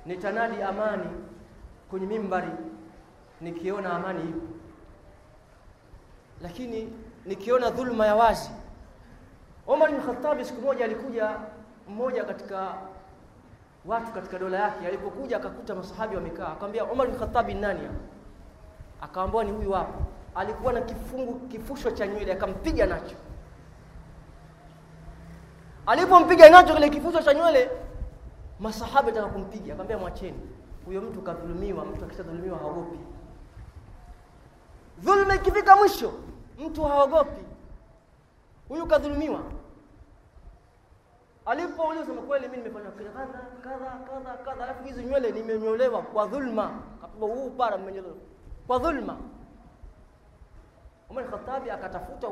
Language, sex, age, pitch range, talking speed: Swahili, male, 30-49, 180-260 Hz, 110 wpm